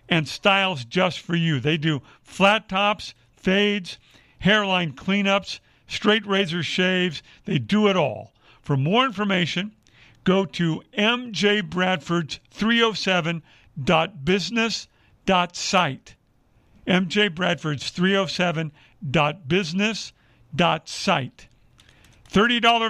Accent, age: American, 50-69